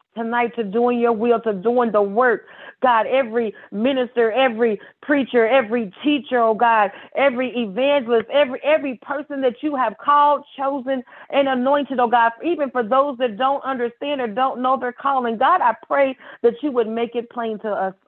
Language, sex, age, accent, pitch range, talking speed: English, female, 40-59, American, 210-260 Hz, 180 wpm